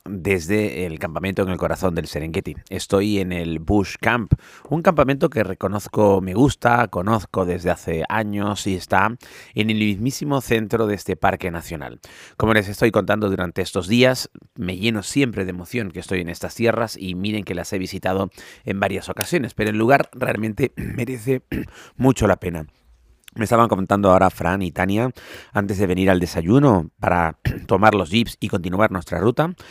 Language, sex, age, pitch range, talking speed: Spanish, male, 30-49, 90-115 Hz, 175 wpm